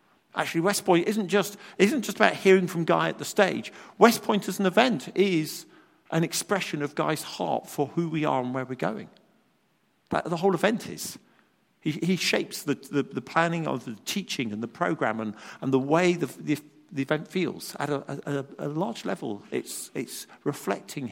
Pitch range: 135-195 Hz